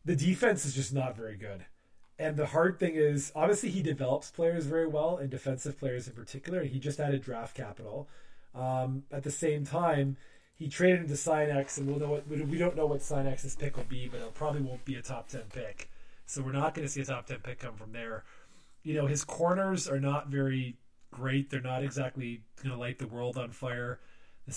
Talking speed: 215 wpm